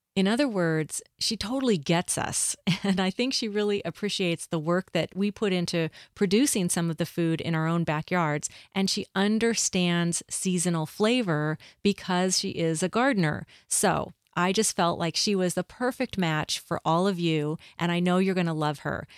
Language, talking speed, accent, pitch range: English, 190 wpm, American, 165-200 Hz